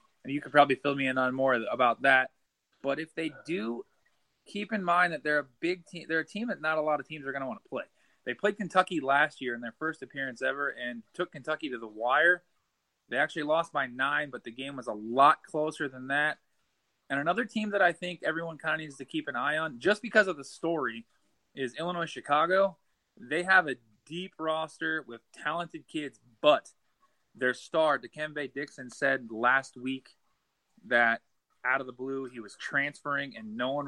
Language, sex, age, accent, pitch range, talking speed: English, male, 20-39, American, 130-160 Hz, 205 wpm